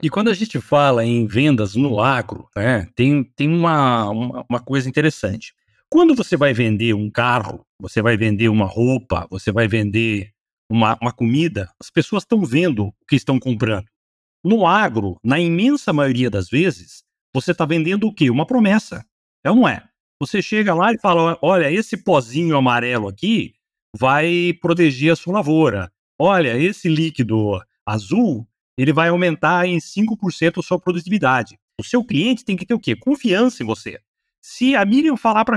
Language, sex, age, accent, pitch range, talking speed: Portuguese, male, 60-79, Brazilian, 120-195 Hz, 170 wpm